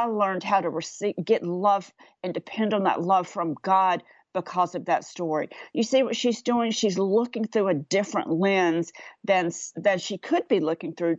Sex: female